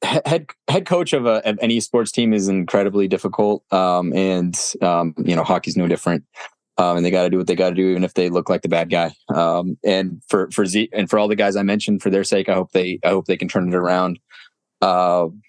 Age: 20-39